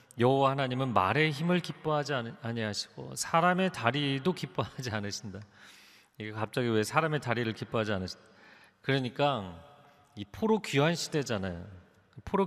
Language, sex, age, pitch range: Korean, male, 40-59, 120-170 Hz